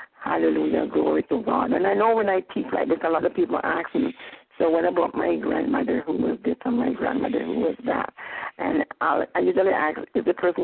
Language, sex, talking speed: English, female, 220 wpm